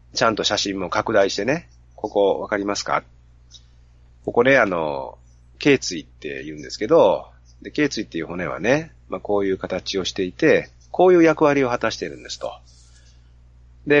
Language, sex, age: Japanese, male, 40-59